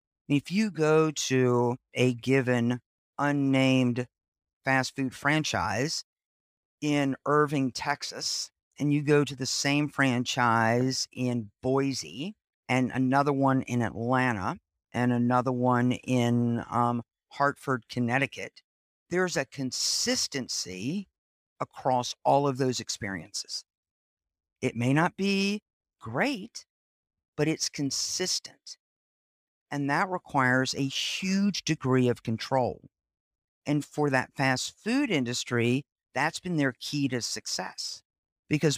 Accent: American